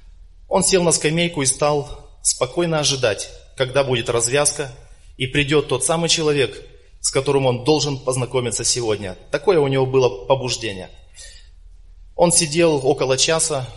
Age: 20-39